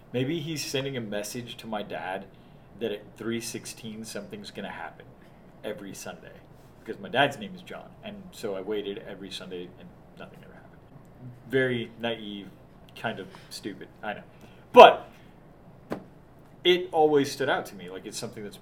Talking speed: 165 wpm